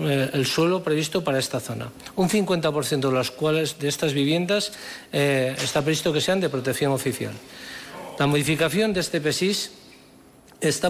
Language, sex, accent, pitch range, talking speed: Spanish, male, Spanish, 135-165 Hz, 155 wpm